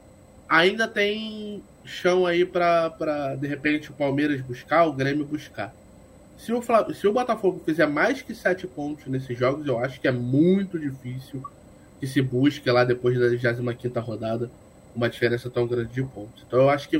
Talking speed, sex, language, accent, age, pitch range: 175 wpm, male, Portuguese, Brazilian, 20-39, 120-165 Hz